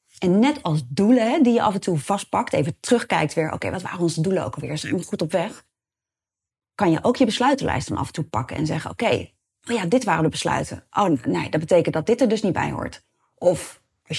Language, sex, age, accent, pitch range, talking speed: Dutch, female, 30-49, Dutch, 150-195 Hz, 255 wpm